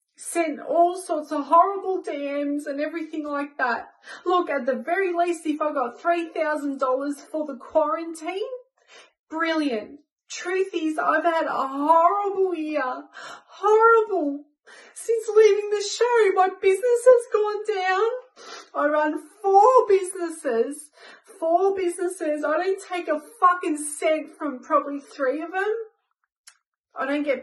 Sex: female